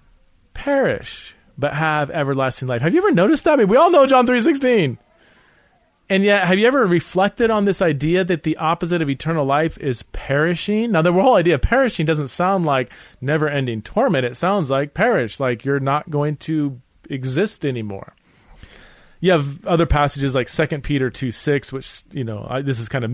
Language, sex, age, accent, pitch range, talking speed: English, male, 30-49, American, 130-170 Hz, 190 wpm